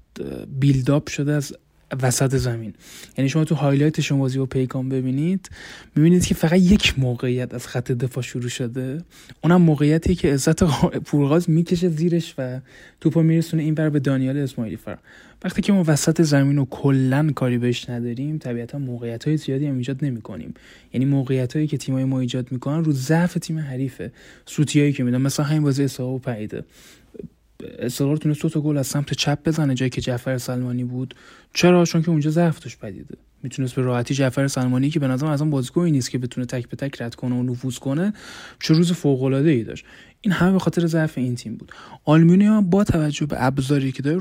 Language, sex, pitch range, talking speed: Persian, male, 130-155 Hz, 180 wpm